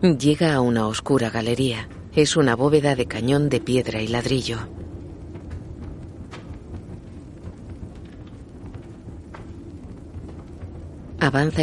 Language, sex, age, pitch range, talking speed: Spanish, female, 40-59, 95-135 Hz, 75 wpm